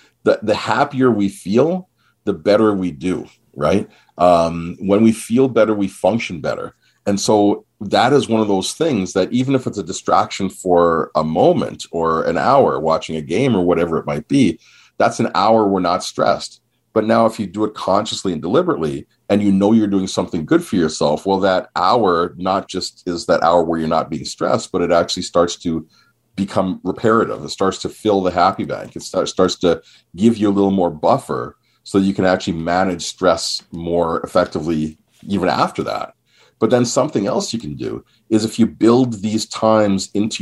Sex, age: male, 40-59